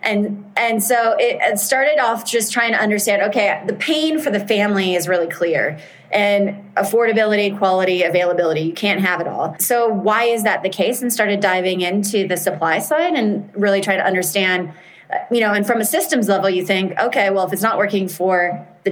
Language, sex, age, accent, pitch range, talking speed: English, female, 30-49, American, 185-215 Hz, 200 wpm